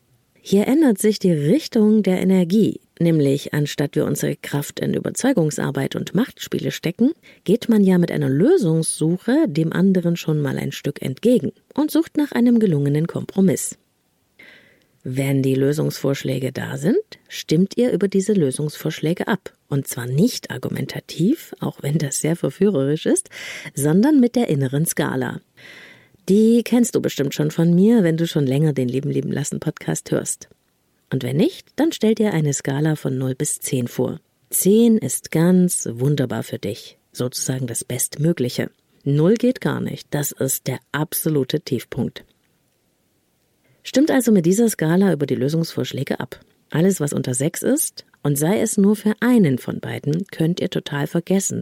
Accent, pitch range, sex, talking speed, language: German, 140-215 Hz, female, 155 wpm, German